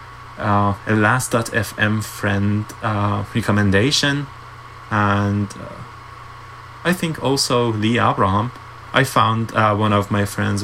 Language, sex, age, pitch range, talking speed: English, male, 20-39, 105-125 Hz, 120 wpm